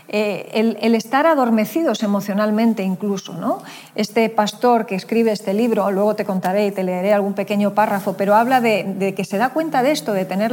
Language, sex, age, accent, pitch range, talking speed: Spanish, female, 40-59, Spanish, 190-225 Hz, 200 wpm